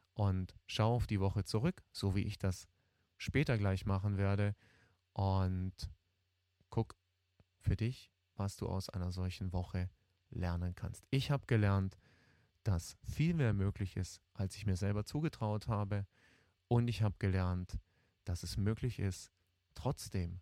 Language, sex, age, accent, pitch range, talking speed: German, male, 30-49, German, 90-110 Hz, 145 wpm